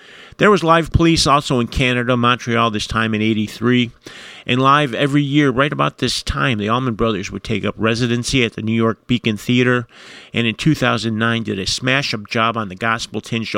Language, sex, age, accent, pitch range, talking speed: English, male, 50-69, American, 110-135 Hz, 190 wpm